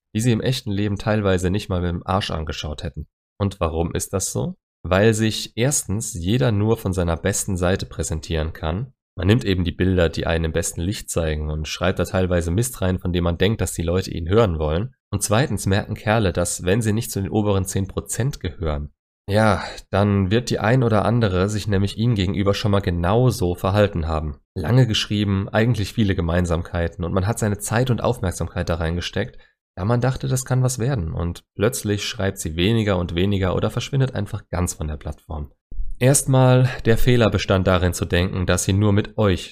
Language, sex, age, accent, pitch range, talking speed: German, male, 30-49, German, 85-110 Hz, 200 wpm